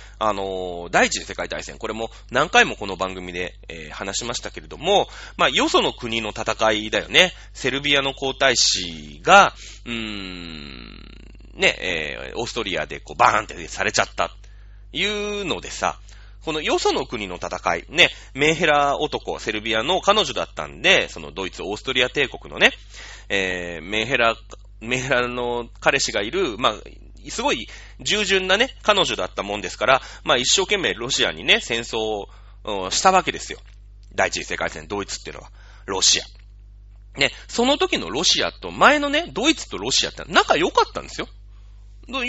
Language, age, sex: Japanese, 30-49, male